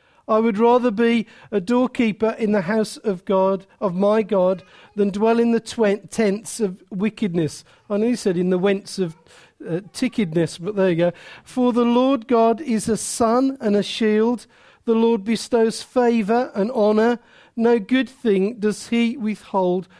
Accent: British